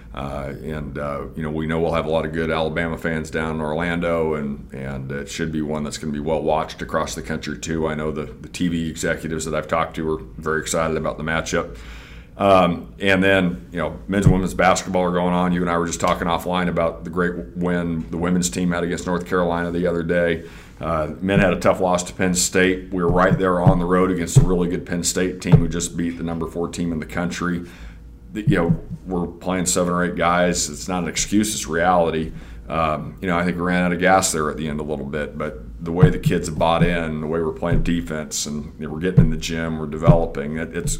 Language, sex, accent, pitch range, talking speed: English, male, American, 75-85 Hz, 250 wpm